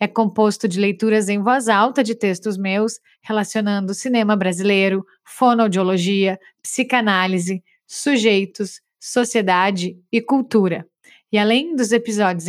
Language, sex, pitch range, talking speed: Portuguese, female, 200-240 Hz, 110 wpm